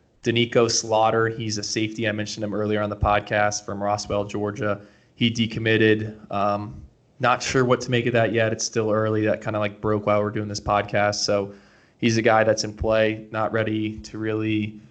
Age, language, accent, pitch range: 20-39, English, American, 105-115 Hz